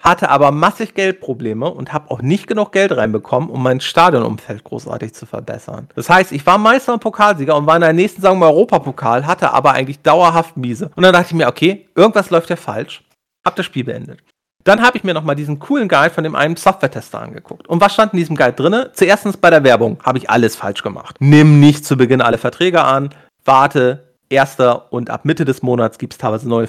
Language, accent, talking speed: German, German, 220 wpm